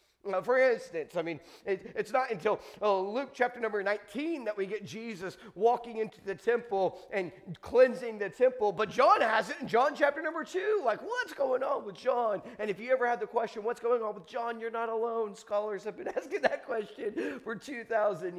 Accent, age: American, 30-49